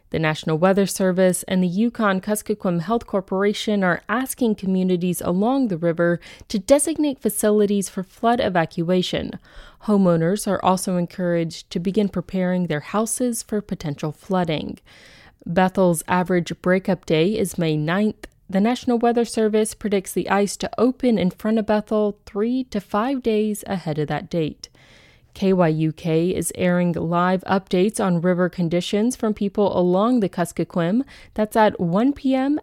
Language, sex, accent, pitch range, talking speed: English, female, American, 180-235 Hz, 145 wpm